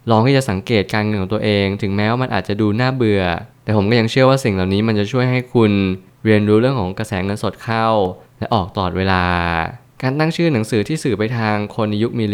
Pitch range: 100-120 Hz